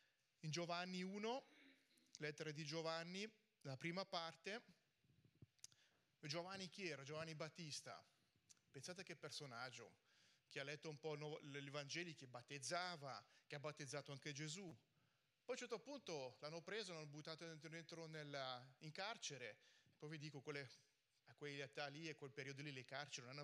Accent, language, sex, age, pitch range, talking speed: native, Italian, male, 30-49, 140-175 Hz, 145 wpm